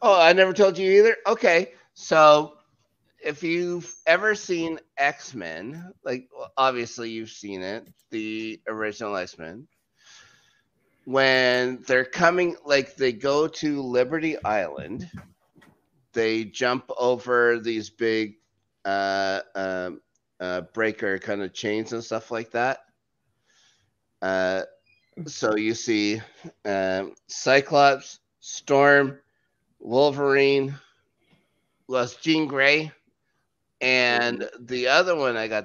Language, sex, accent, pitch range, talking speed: English, male, American, 110-140 Hz, 105 wpm